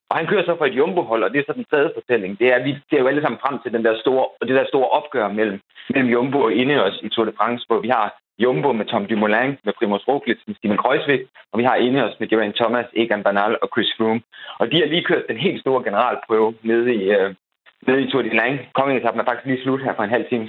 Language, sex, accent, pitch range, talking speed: Danish, male, native, 110-145 Hz, 270 wpm